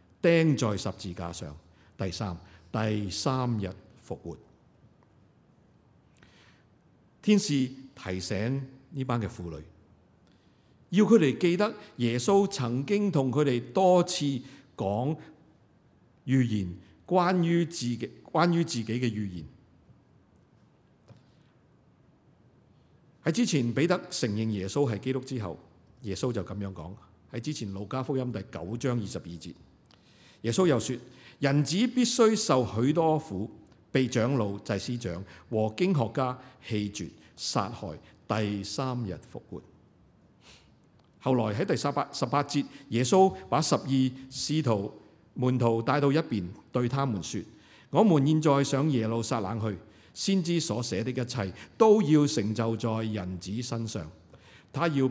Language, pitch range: Chinese, 105-145 Hz